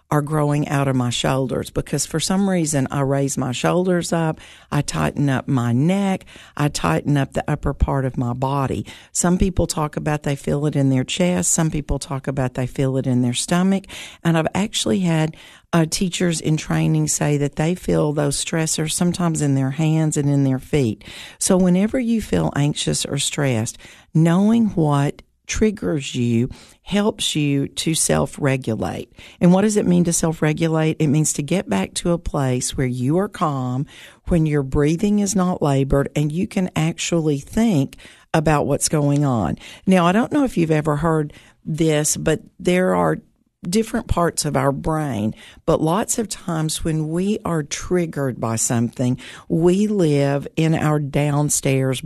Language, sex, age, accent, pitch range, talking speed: English, female, 50-69, American, 140-175 Hz, 175 wpm